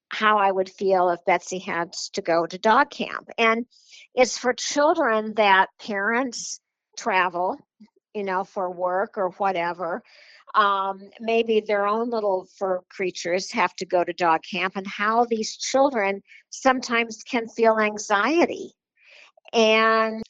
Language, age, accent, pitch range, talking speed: English, 50-69, American, 195-245 Hz, 140 wpm